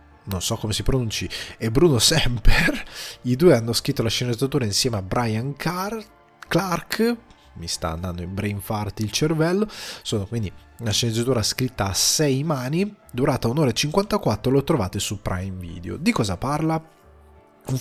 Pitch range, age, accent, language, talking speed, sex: 100-150 Hz, 20-39, native, Italian, 165 wpm, male